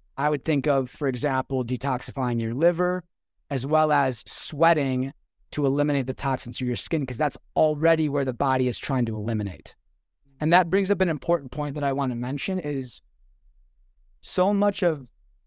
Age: 30-49